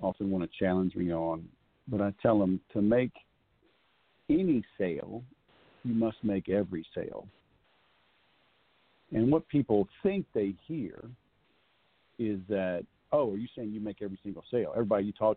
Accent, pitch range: American, 100-115 Hz